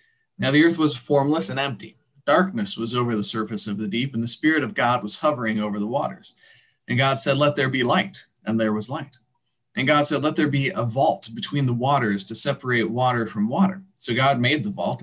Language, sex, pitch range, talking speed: English, male, 115-155 Hz, 230 wpm